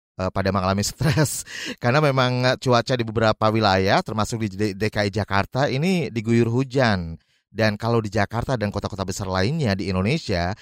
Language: Indonesian